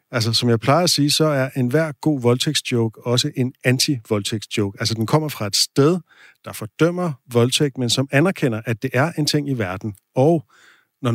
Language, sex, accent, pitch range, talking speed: Danish, male, native, 115-145 Hz, 190 wpm